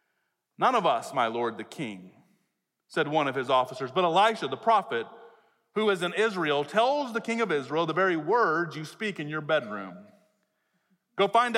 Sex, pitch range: male, 160-220 Hz